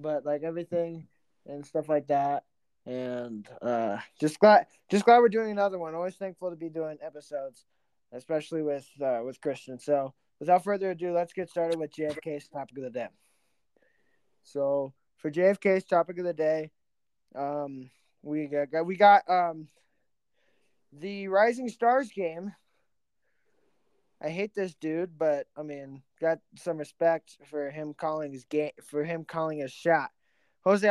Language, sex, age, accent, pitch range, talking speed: English, male, 20-39, American, 145-195 Hz, 155 wpm